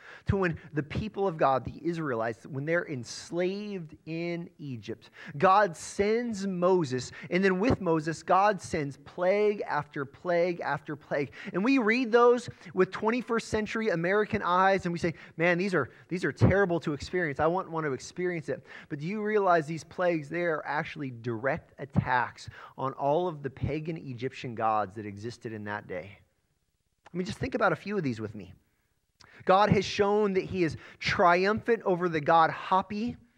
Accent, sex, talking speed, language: American, male, 175 wpm, English